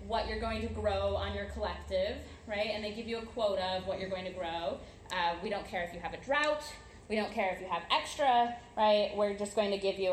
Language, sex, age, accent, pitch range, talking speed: English, female, 20-39, American, 190-245 Hz, 260 wpm